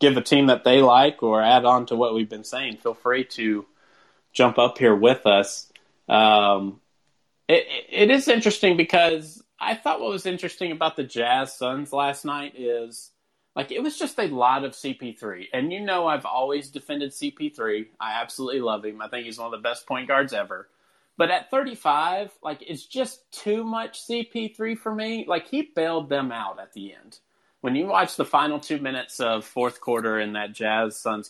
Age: 30-49